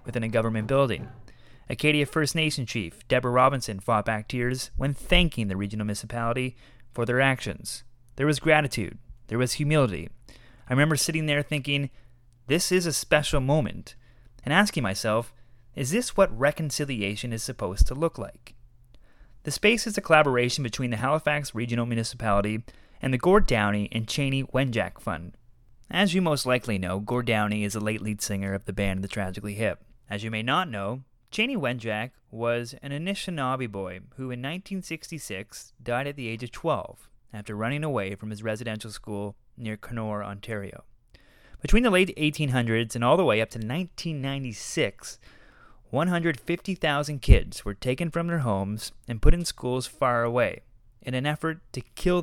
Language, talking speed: English, 165 wpm